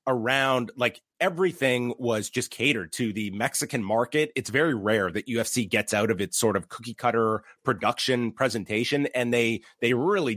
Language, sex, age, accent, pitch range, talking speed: English, male, 30-49, American, 115-145 Hz, 170 wpm